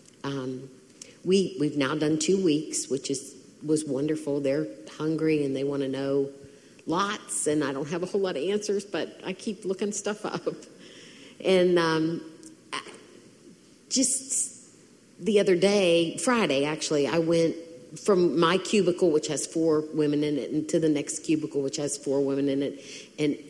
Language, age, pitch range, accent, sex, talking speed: English, 50-69, 150-225 Hz, American, female, 165 wpm